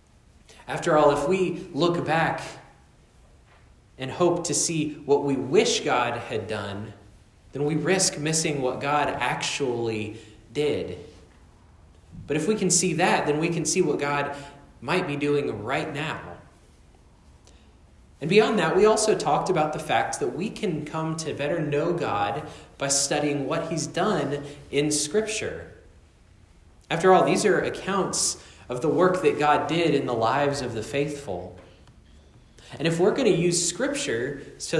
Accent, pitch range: American, 105-160 Hz